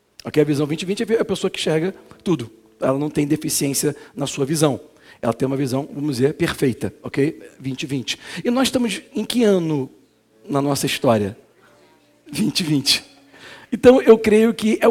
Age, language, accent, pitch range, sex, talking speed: 40-59, Portuguese, Brazilian, 160-225 Hz, male, 165 wpm